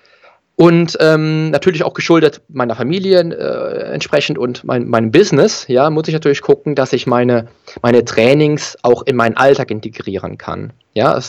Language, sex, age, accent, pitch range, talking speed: English, male, 20-39, German, 115-145 Hz, 150 wpm